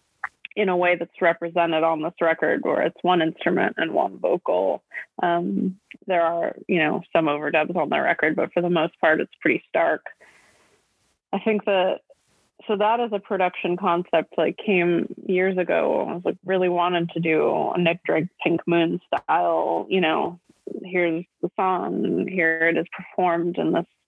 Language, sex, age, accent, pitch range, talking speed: English, female, 20-39, American, 170-195 Hz, 180 wpm